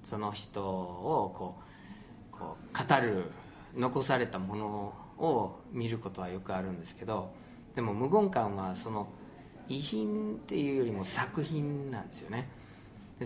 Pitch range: 105-155 Hz